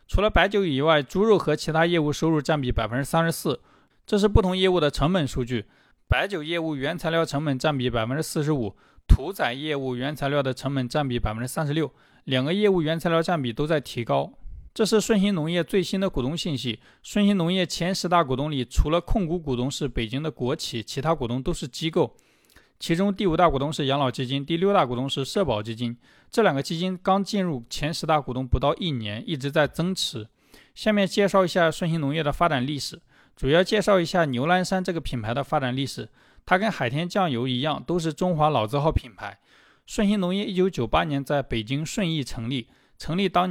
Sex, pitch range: male, 130-175 Hz